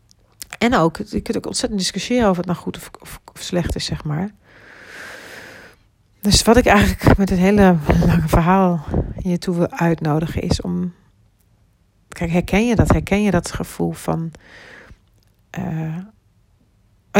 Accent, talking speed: Dutch, 150 wpm